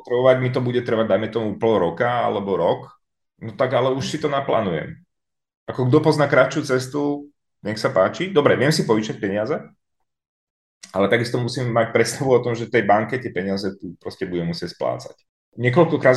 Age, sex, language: 30-49, male, Czech